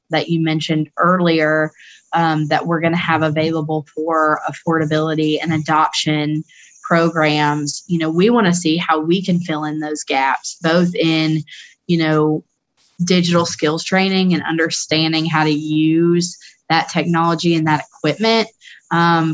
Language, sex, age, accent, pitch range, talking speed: English, female, 20-39, American, 155-170 Hz, 145 wpm